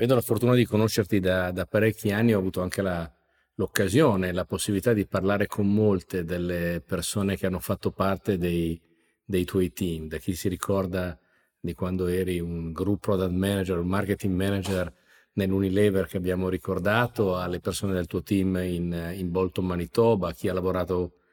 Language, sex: Italian, male